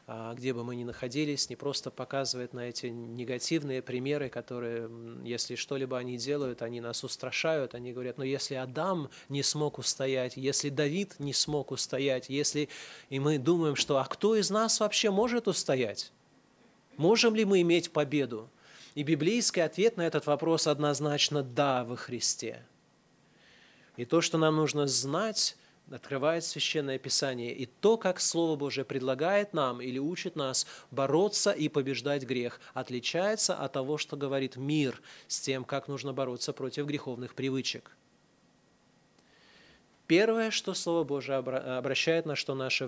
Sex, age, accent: male, 20-39, native